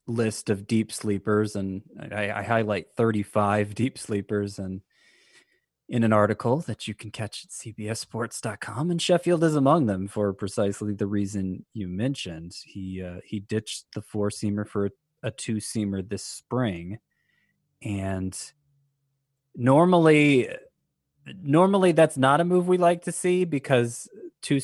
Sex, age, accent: male, 20-39, American